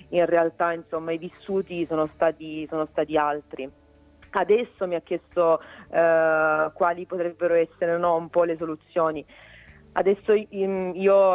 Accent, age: native, 40-59